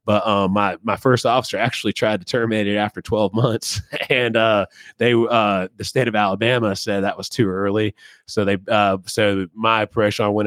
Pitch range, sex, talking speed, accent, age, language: 100-115 Hz, male, 200 wpm, American, 20-39, English